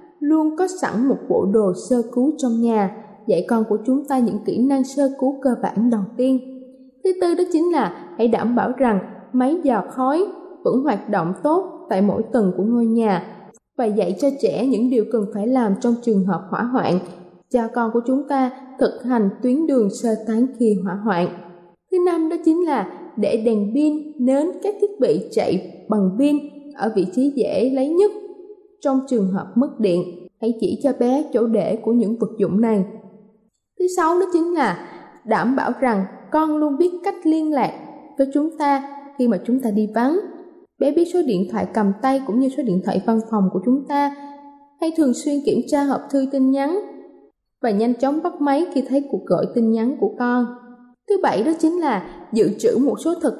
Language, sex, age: Thai, female, 20-39